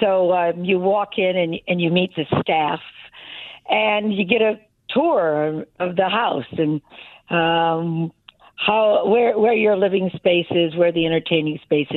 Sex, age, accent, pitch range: female, 50-69, American, 165-205 Hz